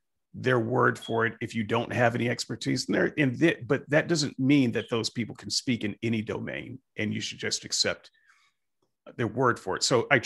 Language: English